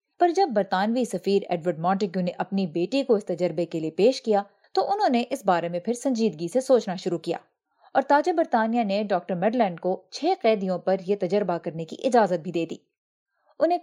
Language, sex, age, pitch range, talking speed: Urdu, female, 30-49, 185-250 Hz, 205 wpm